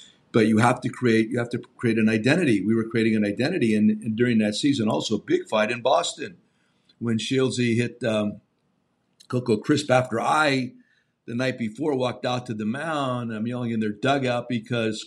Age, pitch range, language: 50-69, 110-130 Hz, English